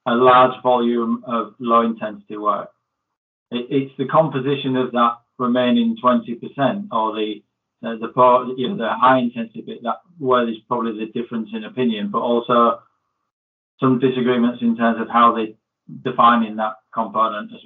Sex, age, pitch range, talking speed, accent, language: male, 20-39, 110-125 Hz, 155 wpm, British, English